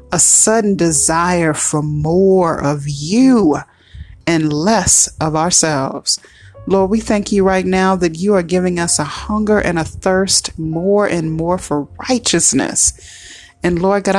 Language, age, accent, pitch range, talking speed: English, 30-49, American, 150-190 Hz, 150 wpm